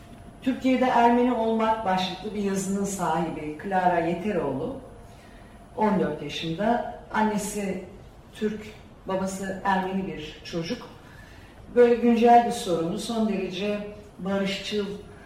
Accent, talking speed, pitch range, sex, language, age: native, 95 wpm, 180-225 Hz, female, Turkish, 40-59